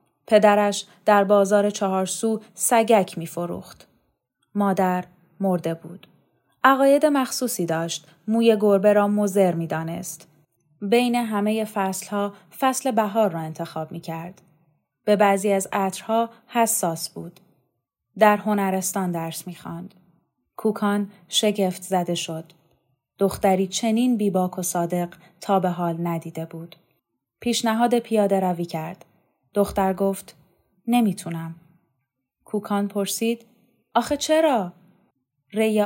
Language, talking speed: Persian, 110 wpm